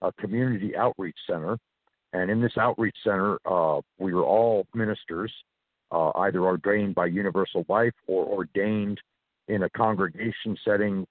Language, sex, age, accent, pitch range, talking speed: English, male, 50-69, American, 100-125 Hz, 140 wpm